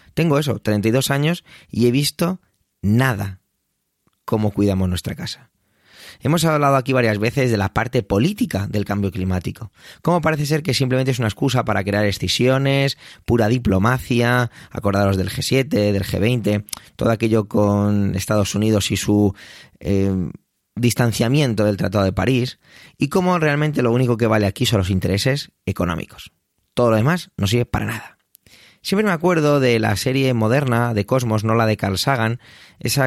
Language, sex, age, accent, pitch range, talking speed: Spanish, male, 20-39, Spanish, 105-135 Hz, 160 wpm